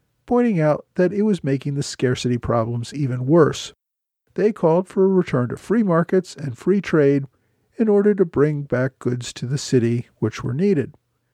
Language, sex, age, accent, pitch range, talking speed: English, male, 50-69, American, 125-180 Hz, 180 wpm